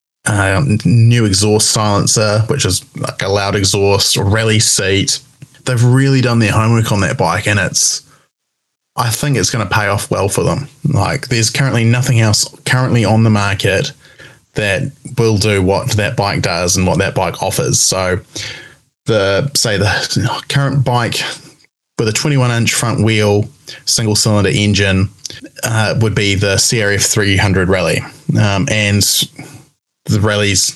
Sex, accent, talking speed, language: male, Australian, 155 wpm, English